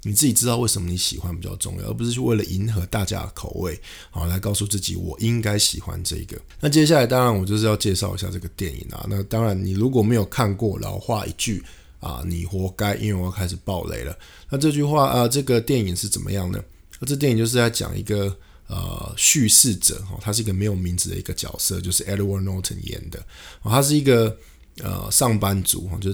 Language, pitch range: Chinese, 90-110 Hz